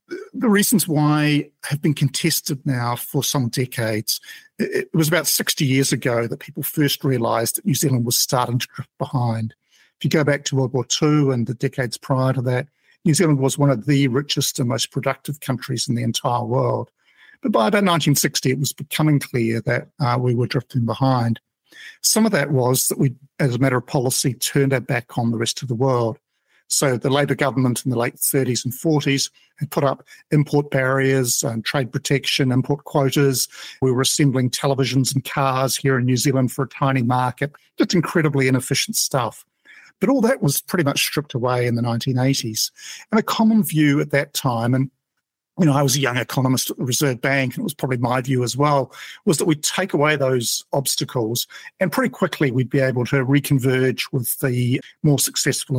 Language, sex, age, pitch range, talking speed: English, male, 50-69, 125-150 Hz, 200 wpm